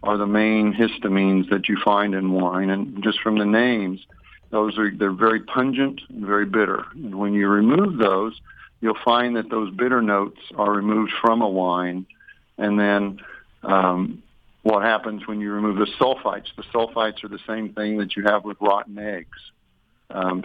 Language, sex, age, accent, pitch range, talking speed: English, male, 50-69, American, 100-115 Hz, 180 wpm